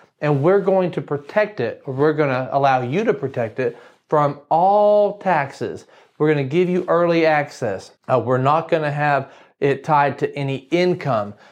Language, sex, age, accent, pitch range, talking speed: English, male, 40-59, American, 125-160 Hz, 165 wpm